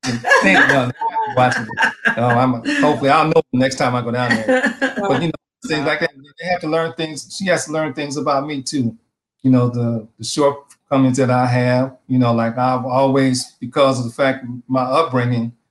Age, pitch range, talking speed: 40-59, 115-135 Hz, 205 wpm